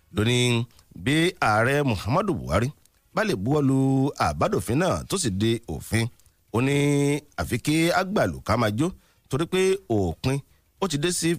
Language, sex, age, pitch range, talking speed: English, male, 50-69, 100-150 Hz, 105 wpm